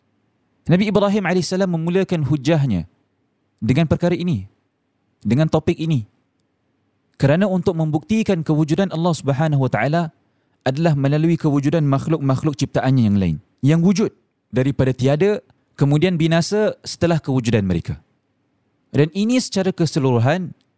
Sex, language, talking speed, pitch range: male, Malay, 105 wpm, 130-170 Hz